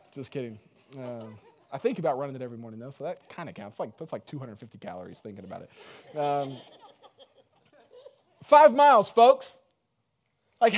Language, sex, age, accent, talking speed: English, male, 30-49, American, 160 wpm